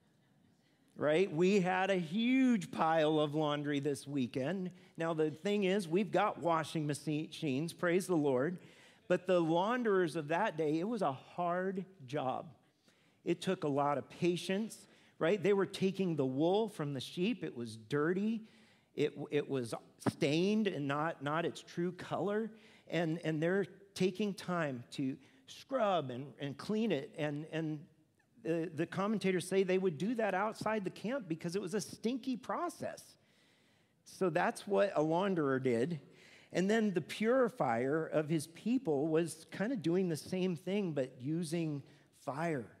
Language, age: English, 40-59